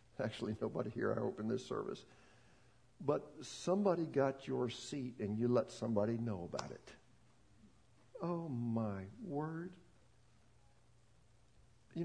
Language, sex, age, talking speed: English, male, 60-79, 120 wpm